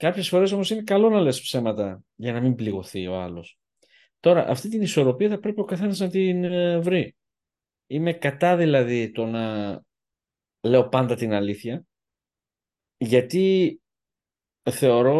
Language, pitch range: Greek, 110-170 Hz